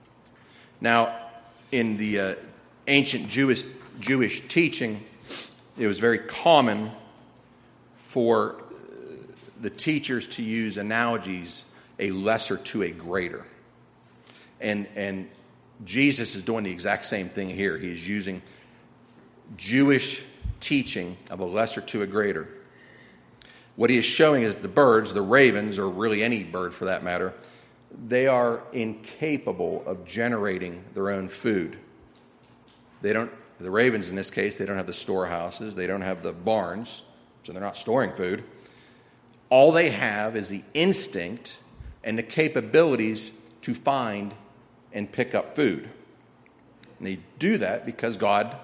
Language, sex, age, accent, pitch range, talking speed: English, male, 40-59, American, 100-130 Hz, 135 wpm